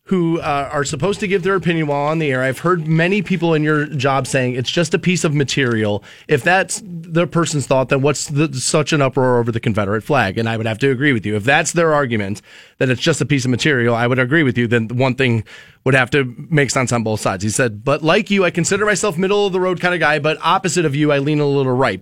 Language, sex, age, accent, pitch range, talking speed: English, male, 30-49, American, 130-175 Hz, 265 wpm